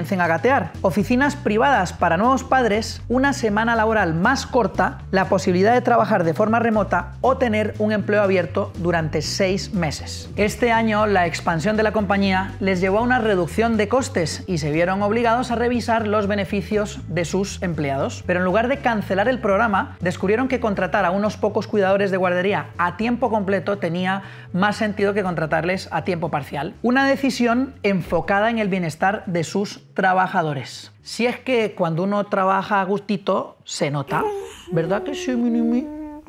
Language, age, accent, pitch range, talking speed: English, 30-49, Spanish, 175-225 Hz, 170 wpm